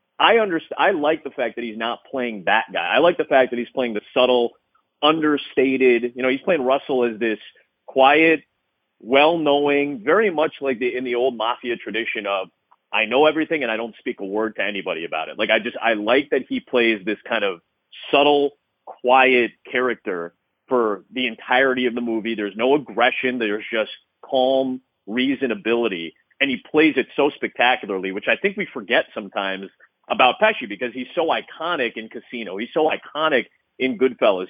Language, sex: English, male